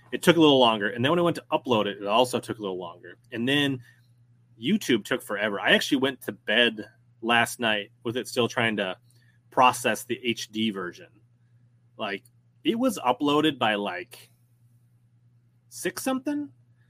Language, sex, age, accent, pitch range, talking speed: English, male, 30-49, American, 110-130 Hz, 165 wpm